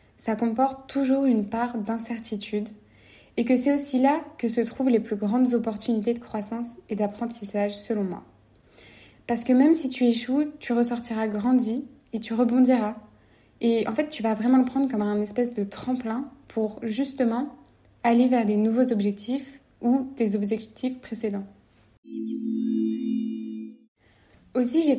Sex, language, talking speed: female, French, 150 wpm